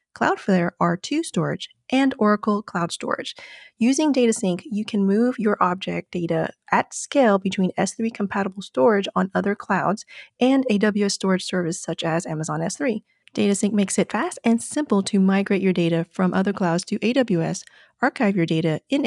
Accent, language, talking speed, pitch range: American, English, 155 wpm, 180-230 Hz